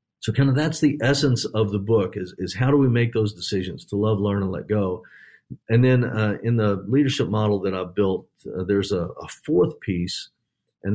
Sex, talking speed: male, 220 wpm